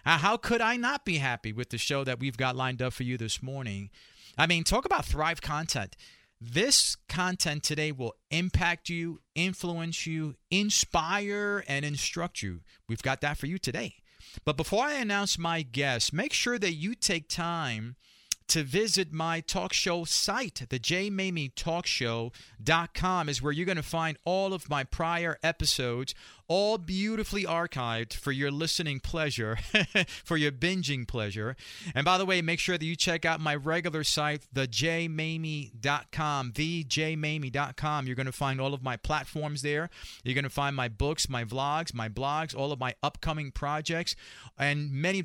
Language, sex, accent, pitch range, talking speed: English, male, American, 135-170 Hz, 165 wpm